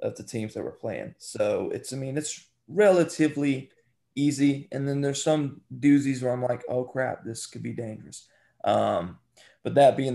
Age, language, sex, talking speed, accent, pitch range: 20-39, English, male, 185 wpm, American, 115-135 Hz